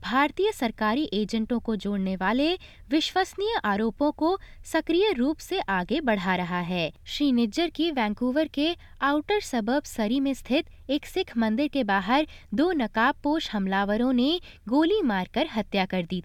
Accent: native